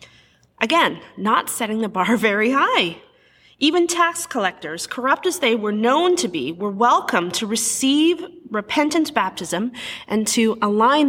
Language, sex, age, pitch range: English, female, 30-49, 200-265 Hz